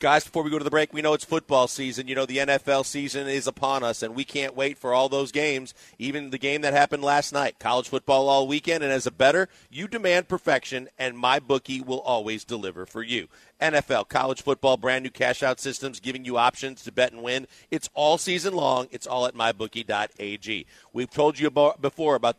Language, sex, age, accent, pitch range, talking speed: English, male, 40-59, American, 130-155 Hz, 215 wpm